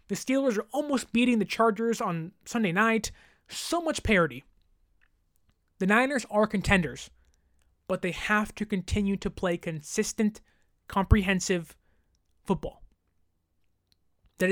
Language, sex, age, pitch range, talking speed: English, male, 20-39, 160-230 Hz, 115 wpm